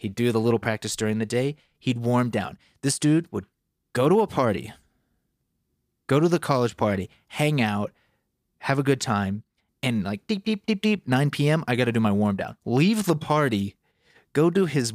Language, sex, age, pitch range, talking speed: English, male, 30-49, 110-140 Hz, 200 wpm